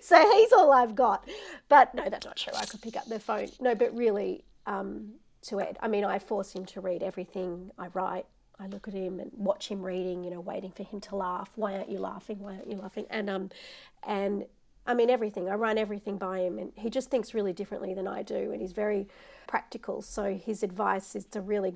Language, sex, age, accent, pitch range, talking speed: English, female, 40-59, Australian, 190-230 Hz, 235 wpm